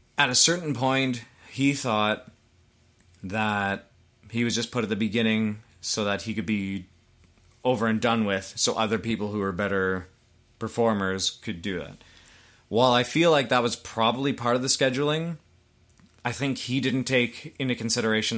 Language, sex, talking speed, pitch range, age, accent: English, male, 165 wpm, 105-125 Hz, 30-49, American